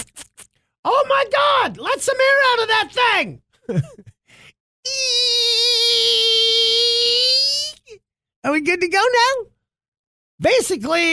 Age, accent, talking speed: 50-69, American, 90 wpm